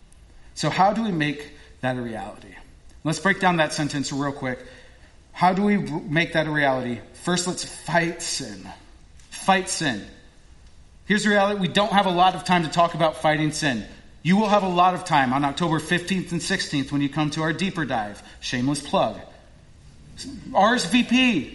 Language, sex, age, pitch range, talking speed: English, male, 30-49, 140-195 Hz, 180 wpm